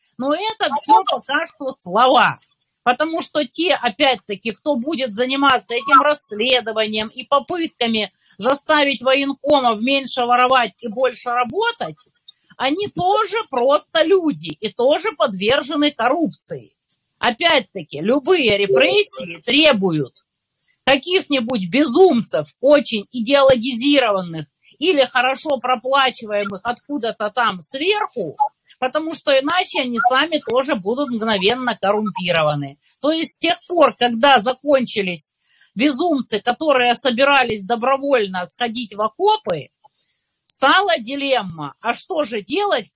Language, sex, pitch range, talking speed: Russian, female, 220-295 Hz, 105 wpm